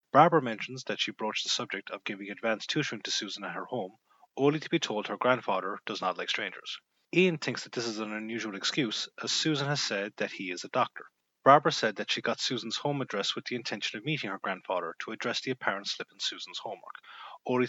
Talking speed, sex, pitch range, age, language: 225 wpm, male, 115-145 Hz, 30-49, English